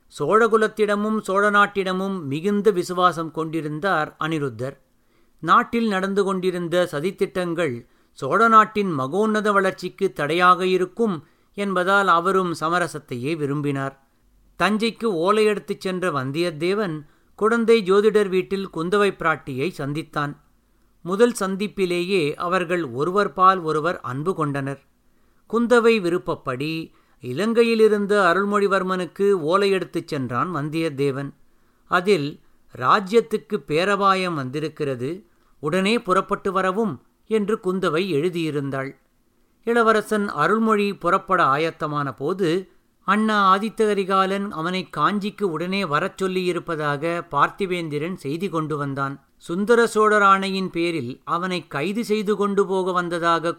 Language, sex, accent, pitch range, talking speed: Tamil, male, native, 150-200 Hz, 90 wpm